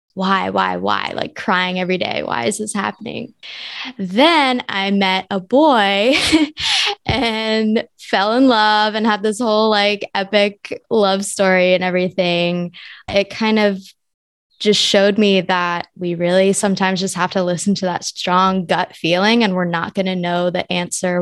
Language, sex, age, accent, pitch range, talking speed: English, female, 20-39, American, 180-210 Hz, 160 wpm